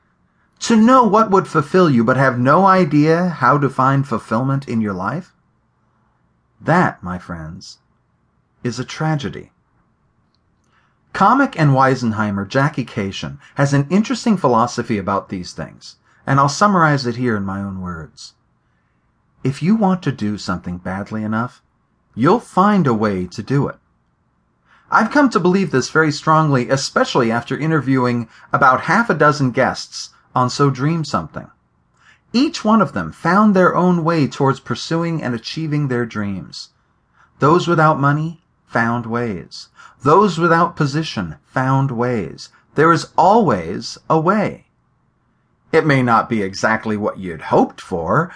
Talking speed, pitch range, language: 145 wpm, 115-170 Hz, English